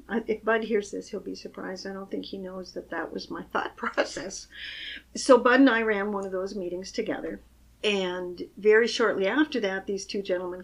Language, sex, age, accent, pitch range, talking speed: English, female, 50-69, American, 180-235 Hz, 205 wpm